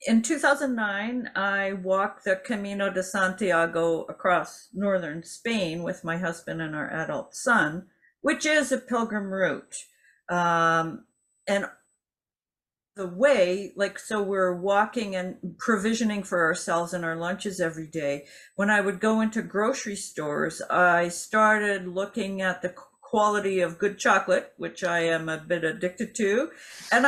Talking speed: 140 wpm